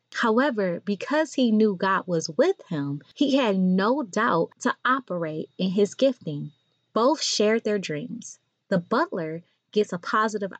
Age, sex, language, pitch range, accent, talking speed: 20-39, female, English, 175-240 Hz, American, 145 wpm